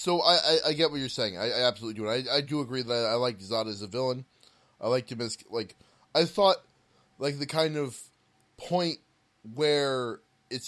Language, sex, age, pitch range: English, male, 20-39, 115-155 Hz